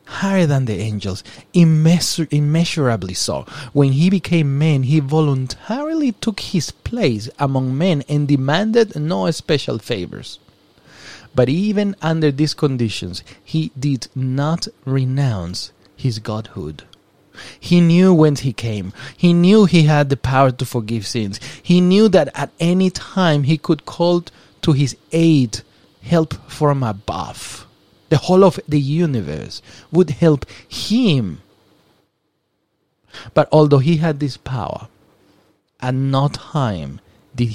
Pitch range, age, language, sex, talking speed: 120-165 Hz, 30-49, English, male, 130 wpm